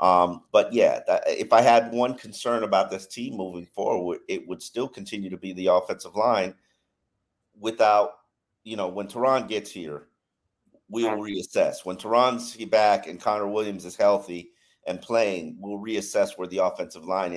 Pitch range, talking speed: 95-120 Hz, 165 wpm